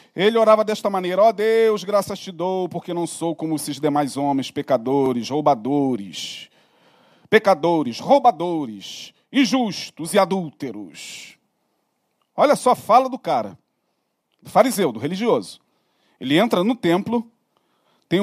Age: 40-59